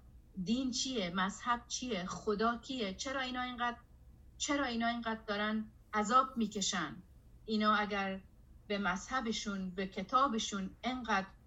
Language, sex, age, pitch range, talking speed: Persian, female, 30-49, 195-230 Hz, 115 wpm